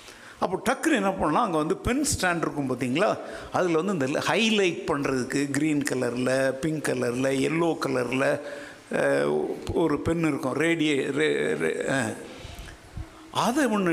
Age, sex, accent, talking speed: 50-69, male, native, 120 wpm